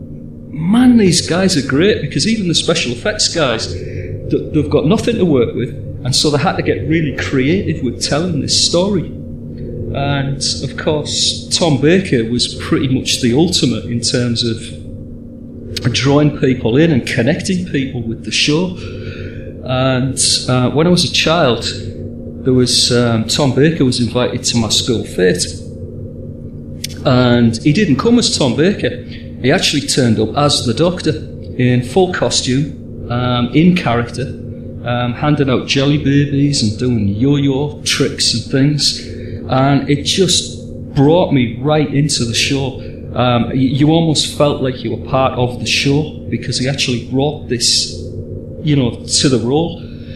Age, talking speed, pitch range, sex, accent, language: 40-59, 155 wpm, 115-145 Hz, male, British, English